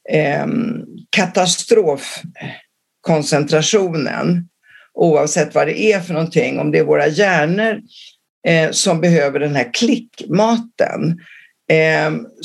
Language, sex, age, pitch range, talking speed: English, female, 50-69, 165-230 Hz, 80 wpm